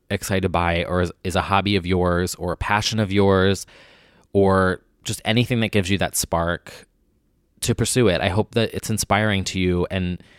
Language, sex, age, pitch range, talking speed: English, male, 20-39, 90-105 Hz, 185 wpm